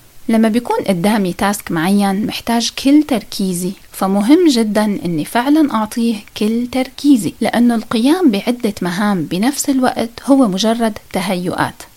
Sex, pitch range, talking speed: female, 195-265 Hz, 120 wpm